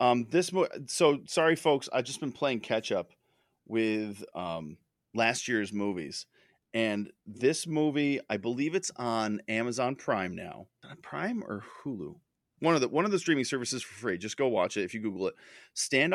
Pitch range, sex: 110-140 Hz, male